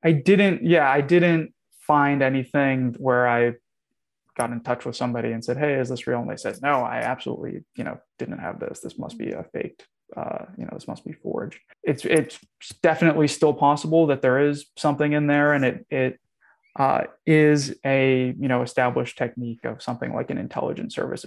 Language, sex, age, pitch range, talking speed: English, male, 20-39, 125-155 Hz, 200 wpm